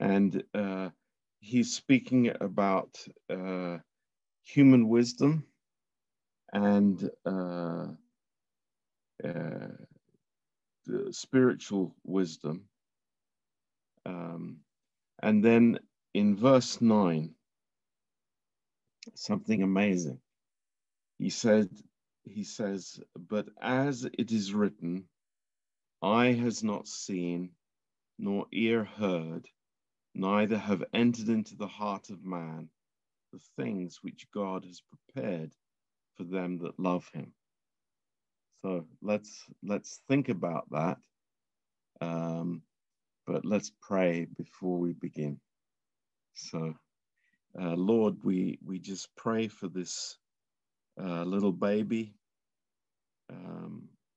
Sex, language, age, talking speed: male, Romanian, 50-69, 90 wpm